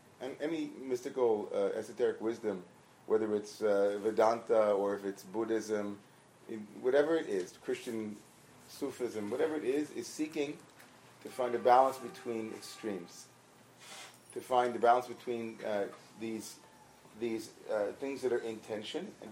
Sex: male